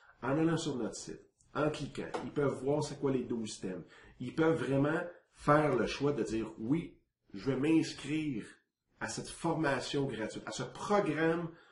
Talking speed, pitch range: 175 wpm, 115-155 Hz